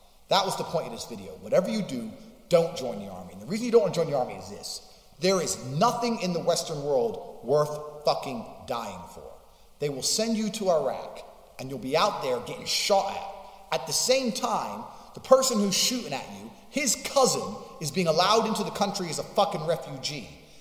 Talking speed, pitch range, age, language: 215 wpm, 185-260 Hz, 30-49, English